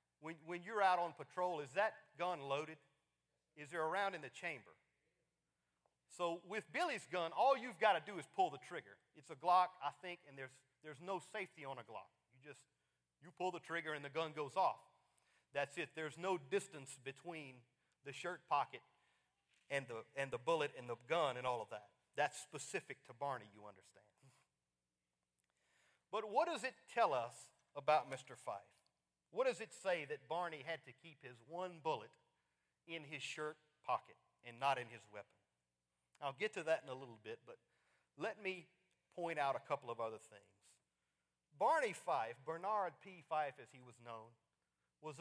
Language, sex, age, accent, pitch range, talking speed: English, male, 40-59, American, 130-180 Hz, 185 wpm